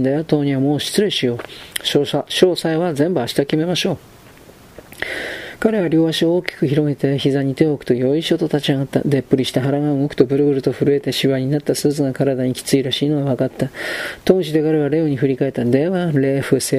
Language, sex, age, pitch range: Japanese, male, 40-59, 130-150 Hz